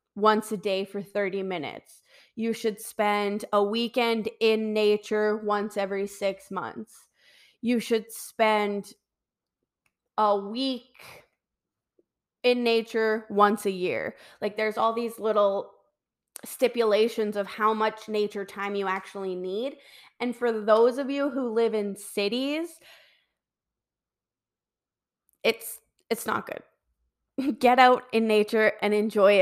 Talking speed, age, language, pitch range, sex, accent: 120 wpm, 20-39, English, 200-240 Hz, female, American